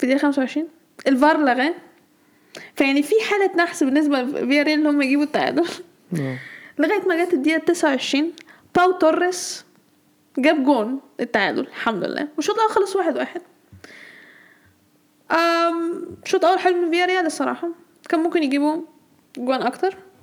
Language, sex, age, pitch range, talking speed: Arabic, female, 10-29, 285-350 Hz, 130 wpm